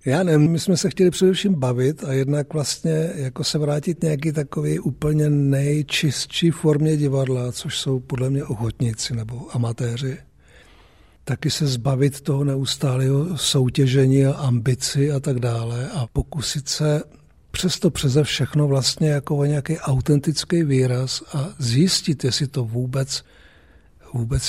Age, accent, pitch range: 60-79, native, 125-150 Hz